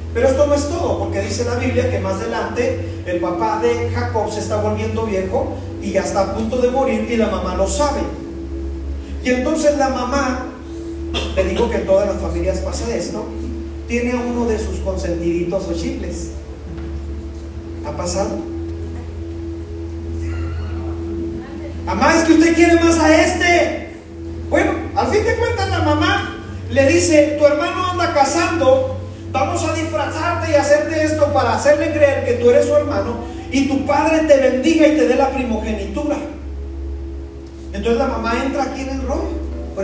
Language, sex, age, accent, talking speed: Spanish, male, 40-59, Mexican, 165 wpm